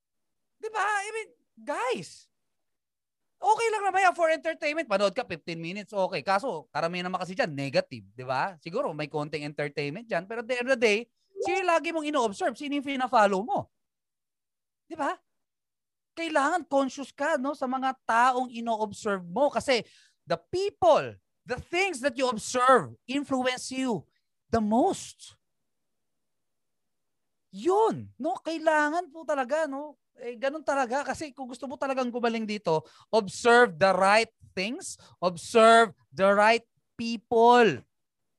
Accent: native